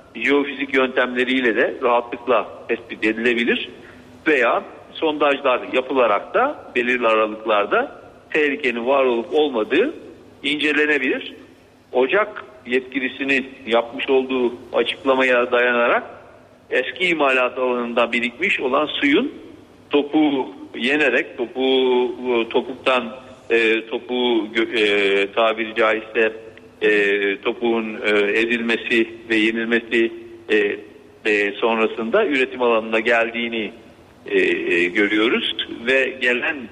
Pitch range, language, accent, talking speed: 115-135 Hz, Turkish, native, 75 wpm